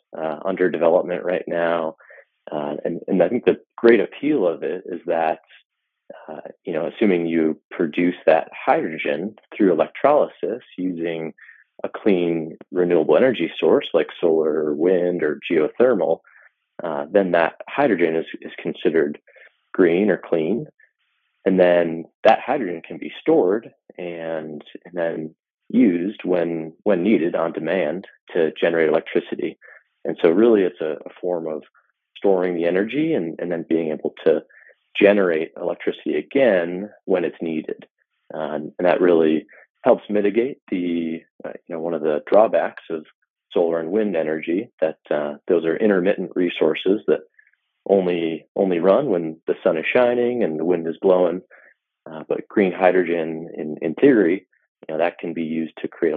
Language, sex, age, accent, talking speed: English, male, 30-49, American, 155 wpm